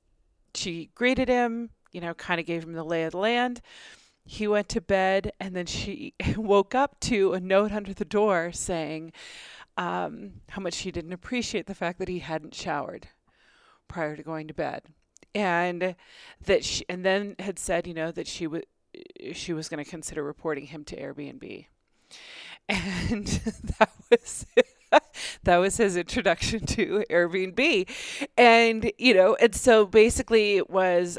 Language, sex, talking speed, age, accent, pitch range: English, female, 165 wpm, 30-49, American, 160-205 Hz